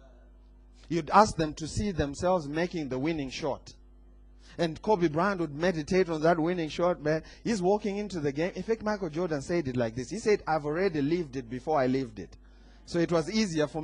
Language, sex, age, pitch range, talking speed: English, male, 30-49, 150-200 Hz, 210 wpm